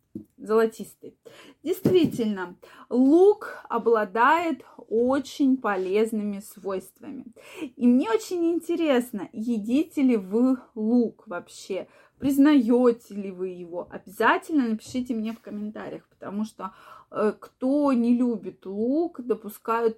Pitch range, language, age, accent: 215-265 Hz, Russian, 20-39, native